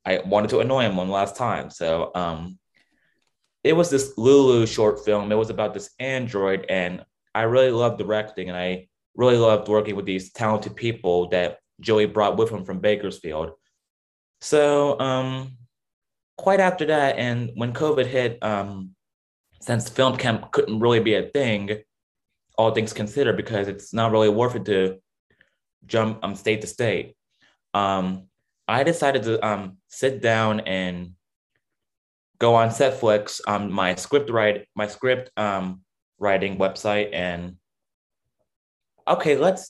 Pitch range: 95-125 Hz